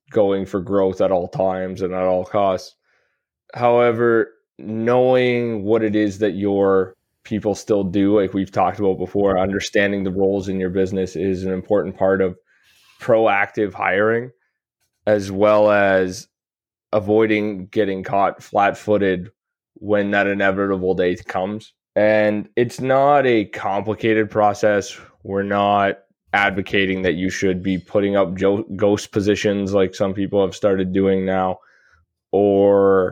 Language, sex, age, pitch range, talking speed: English, male, 20-39, 95-105 Hz, 135 wpm